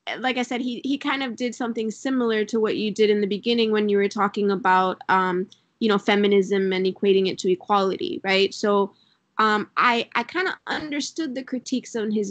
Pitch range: 205-245 Hz